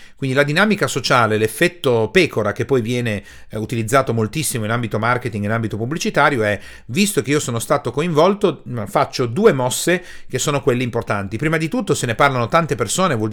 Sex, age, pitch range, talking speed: male, 40-59, 110-145 Hz, 190 wpm